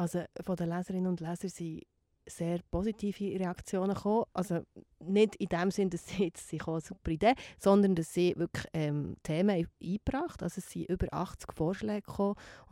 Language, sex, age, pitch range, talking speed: German, female, 30-49, 170-200 Hz, 180 wpm